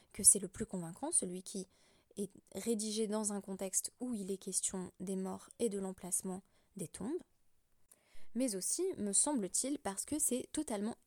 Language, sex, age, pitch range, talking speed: French, female, 20-39, 190-240 Hz, 170 wpm